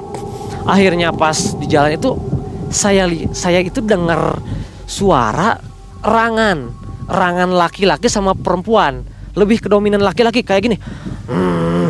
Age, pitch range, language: 20-39, 150-225 Hz, Indonesian